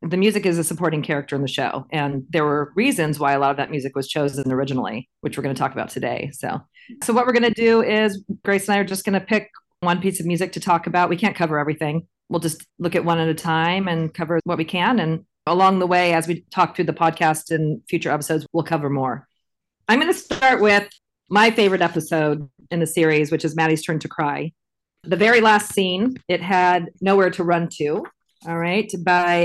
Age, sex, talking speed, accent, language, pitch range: 40-59, female, 235 wpm, American, English, 155-185 Hz